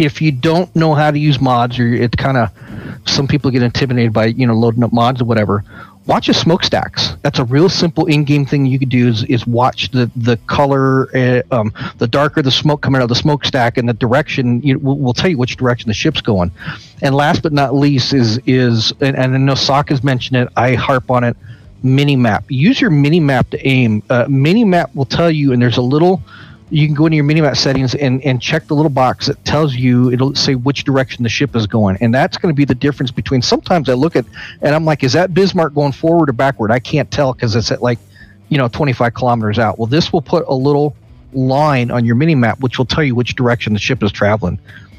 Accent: American